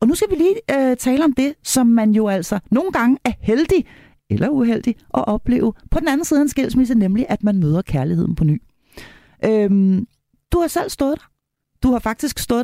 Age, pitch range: 40-59, 180-245 Hz